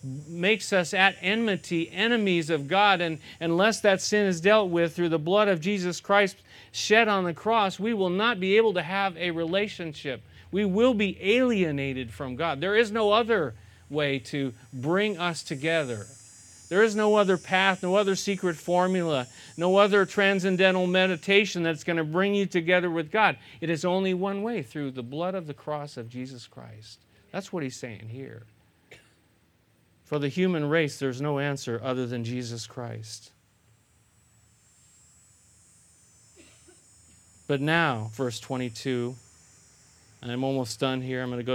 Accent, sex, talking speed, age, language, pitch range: American, male, 160 wpm, 40-59, English, 120-185 Hz